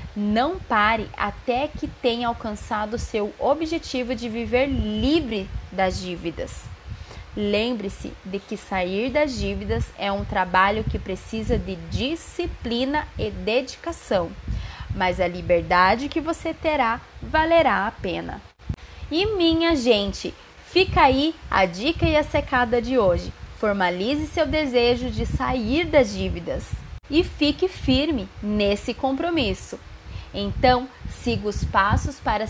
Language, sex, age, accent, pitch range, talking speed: Portuguese, female, 20-39, Brazilian, 205-310 Hz, 125 wpm